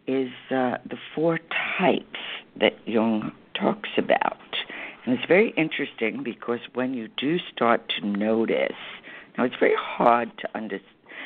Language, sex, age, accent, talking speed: English, female, 60-79, American, 140 wpm